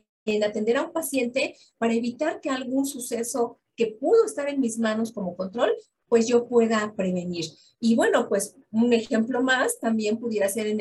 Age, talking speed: 40-59, 180 wpm